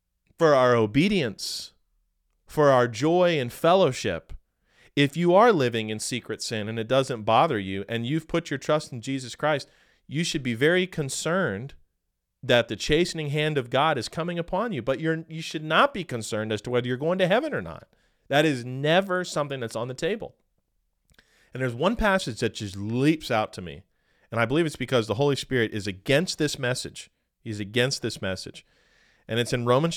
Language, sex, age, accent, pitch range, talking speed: English, male, 40-59, American, 110-155 Hz, 195 wpm